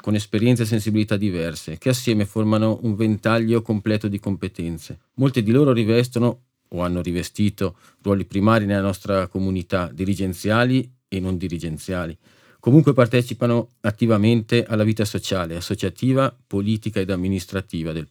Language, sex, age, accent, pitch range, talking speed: Italian, male, 40-59, native, 95-120 Hz, 135 wpm